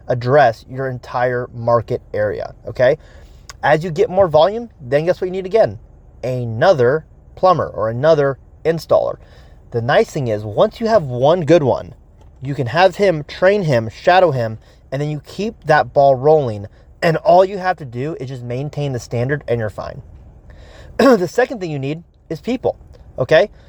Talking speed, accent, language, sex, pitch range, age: 175 wpm, American, English, male, 130-185 Hz, 30-49